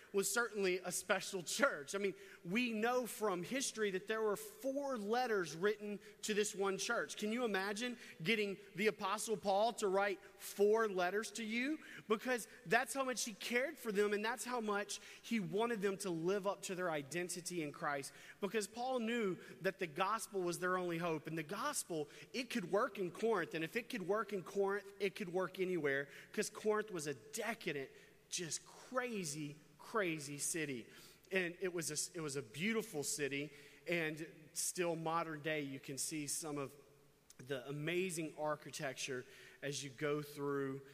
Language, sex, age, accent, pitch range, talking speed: English, male, 30-49, American, 140-205 Hz, 175 wpm